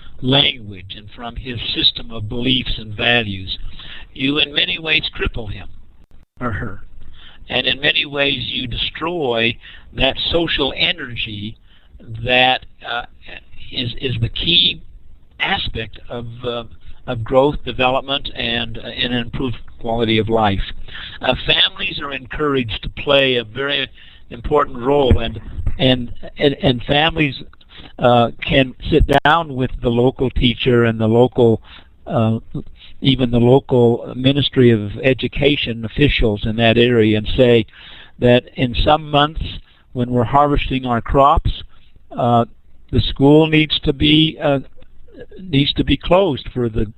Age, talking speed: 60-79, 135 wpm